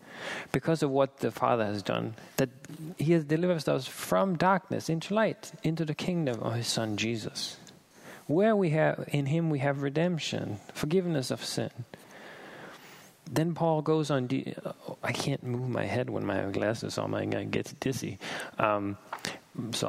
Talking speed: 165 wpm